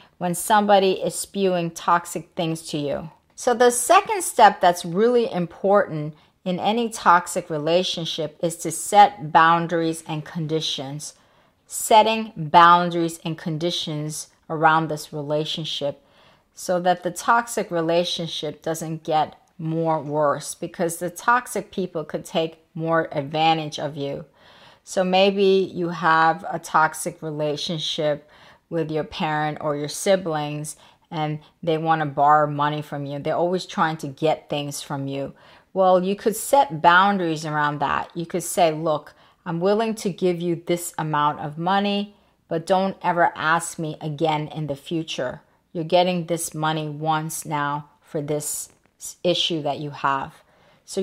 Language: English